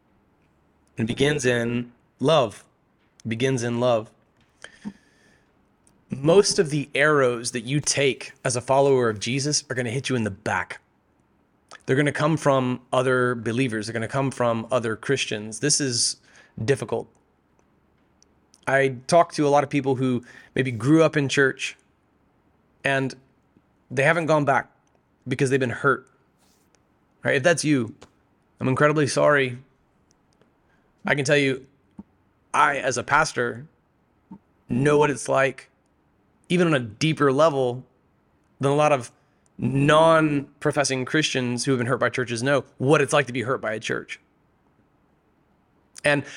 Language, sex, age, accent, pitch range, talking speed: English, male, 30-49, American, 120-145 Hz, 145 wpm